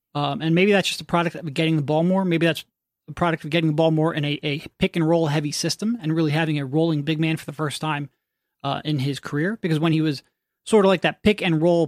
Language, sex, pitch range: English, male, 160-210 Hz